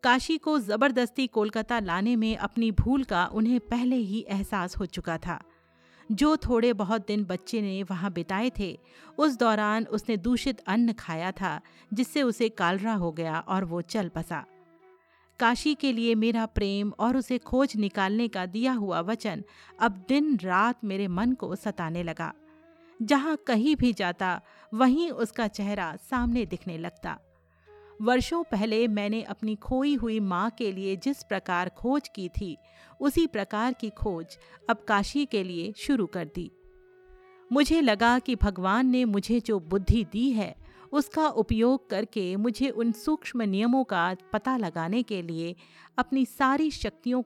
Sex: female